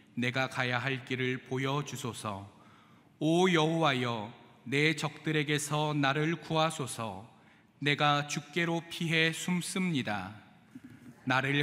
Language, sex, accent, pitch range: Korean, male, native, 125-155 Hz